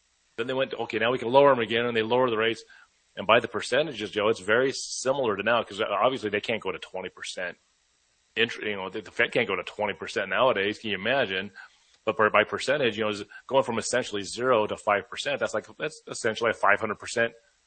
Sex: male